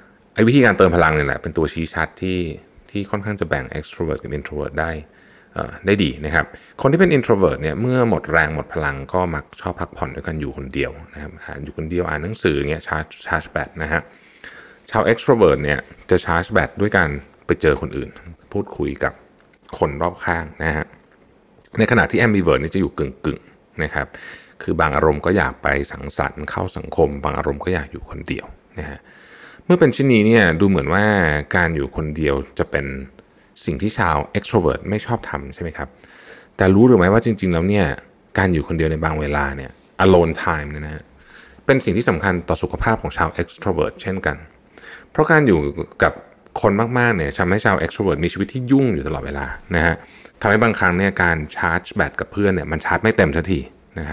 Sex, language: male, Thai